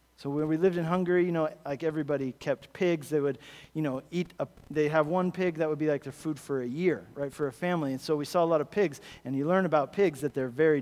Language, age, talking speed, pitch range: English, 40-59, 275 wpm, 150-205 Hz